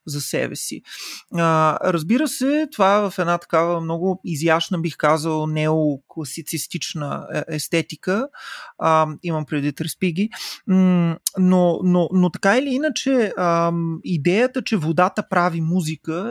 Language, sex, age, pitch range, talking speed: Bulgarian, male, 30-49, 170-215 Hz, 105 wpm